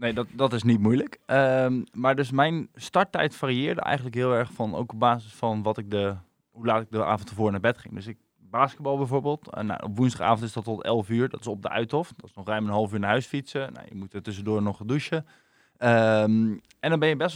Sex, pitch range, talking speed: male, 110-130 Hz, 255 wpm